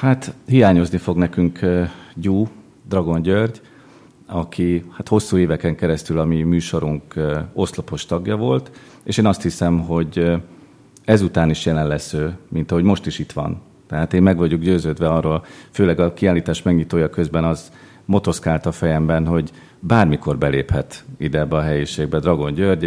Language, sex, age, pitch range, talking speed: Hungarian, male, 40-59, 75-90 Hz, 160 wpm